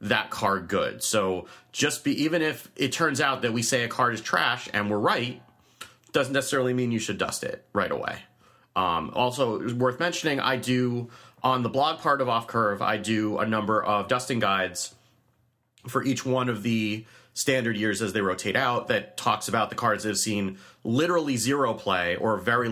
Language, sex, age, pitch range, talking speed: English, male, 30-49, 95-125 Hz, 195 wpm